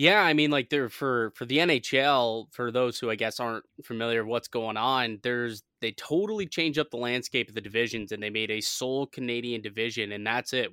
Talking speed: 225 wpm